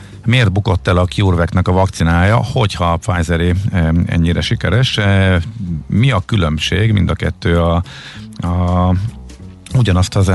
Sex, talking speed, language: male, 140 wpm, Hungarian